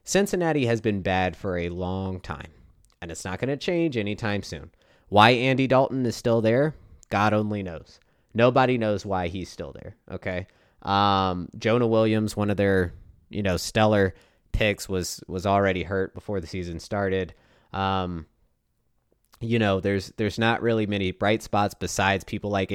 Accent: American